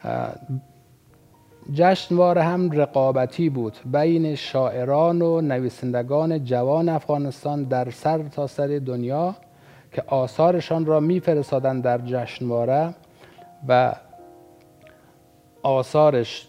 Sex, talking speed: male, 85 wpm